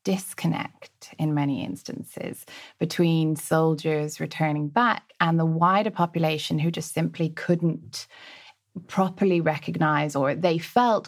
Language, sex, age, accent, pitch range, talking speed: English, female, 20-39, British, 150-175 Hz, 115 wpm